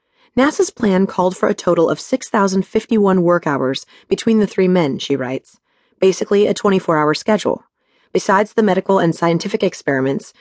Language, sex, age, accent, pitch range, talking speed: English, female, 30-49, American, 165-225 Hz, 150 wpm